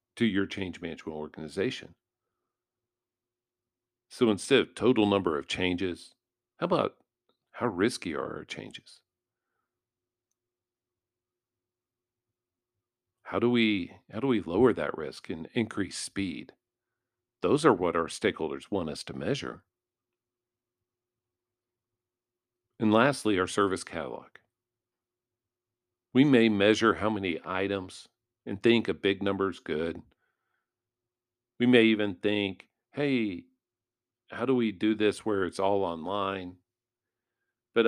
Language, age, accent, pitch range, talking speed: English, 50-69, American, 95-120 Hz, 115 wpm